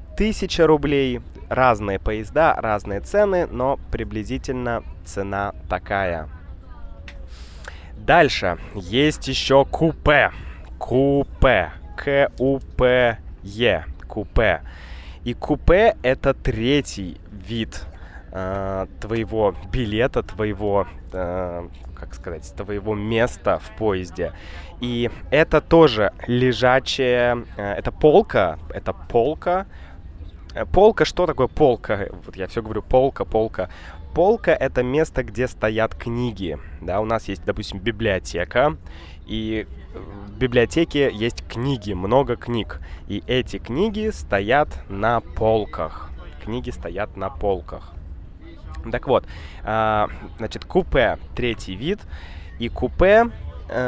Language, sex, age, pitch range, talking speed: Russian, male, 20-39, 85-125 Hz, 100 wpm